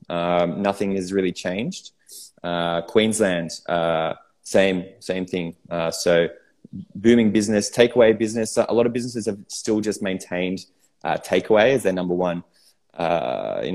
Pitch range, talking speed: 90-115 Hz, 145 wpm